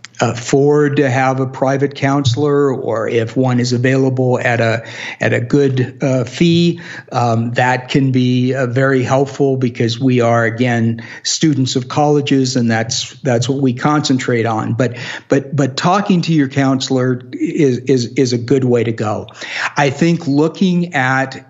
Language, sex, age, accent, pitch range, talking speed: English, male, 50-69, American, 125-145 Hz, 160 wpm